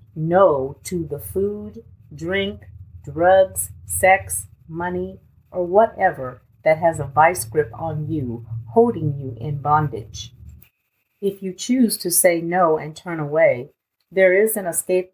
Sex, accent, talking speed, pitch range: female, American, 135 wpm, 145-185 Hz